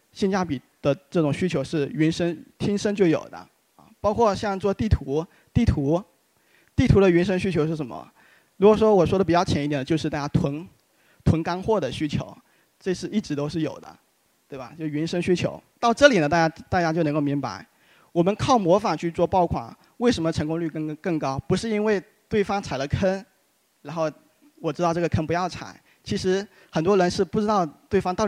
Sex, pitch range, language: male, 155-200 Hz, Chinese